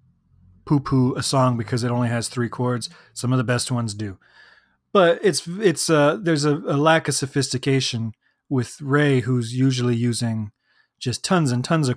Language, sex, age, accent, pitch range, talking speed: English, male, 30-49, American, 125-155 Hz, 175 wpm